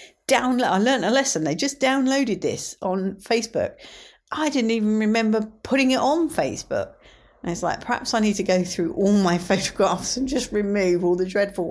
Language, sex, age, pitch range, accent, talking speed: English, female, 50-69, 170-235 Hz, British, 190 wpm